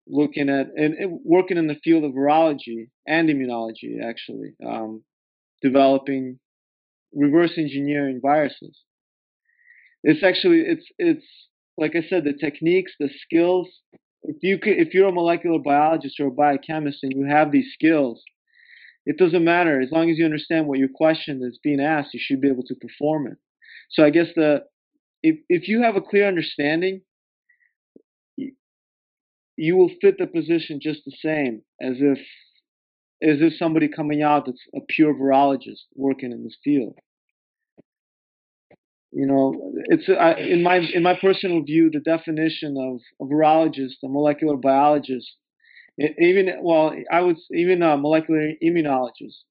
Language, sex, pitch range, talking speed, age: English, male, 140-185 Hz, 155 wpm, 20-39